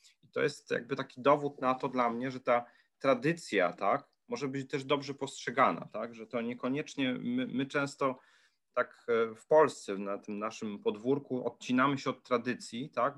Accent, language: native, Polish